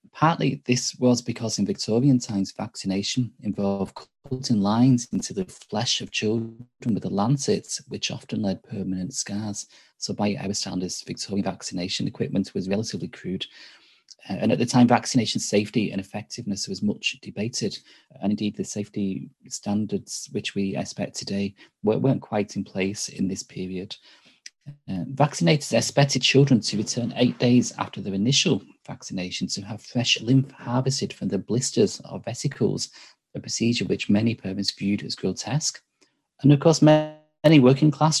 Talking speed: 150 wpm